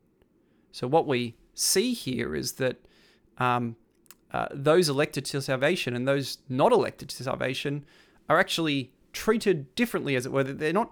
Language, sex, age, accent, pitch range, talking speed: English, male, 30-49, Australian, 125-165 Hz, 155 wpm